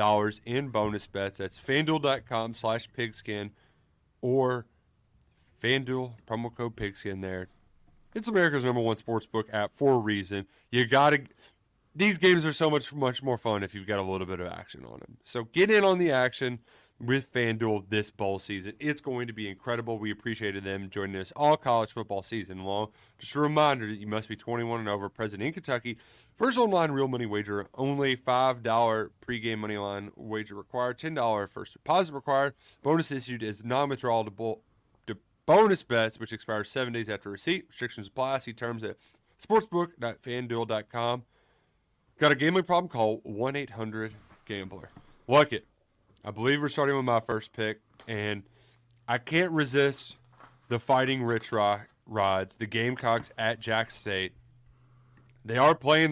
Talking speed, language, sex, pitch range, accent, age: 160 wpm, English, male, 110-140 Hz, American, 30-49